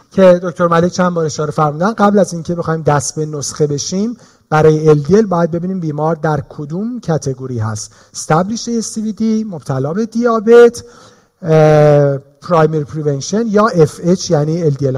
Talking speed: 150 wpm